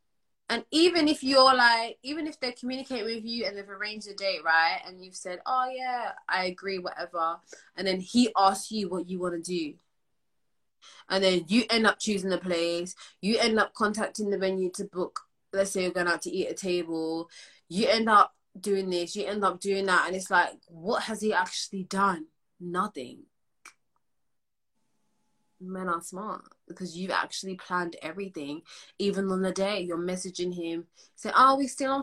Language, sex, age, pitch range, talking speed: English, female, 20-39, 170-215 Hz, 185 wpm